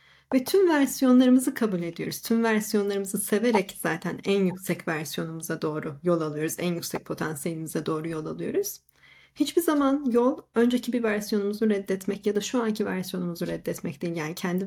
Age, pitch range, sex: 40-59, 185-245 Hz, female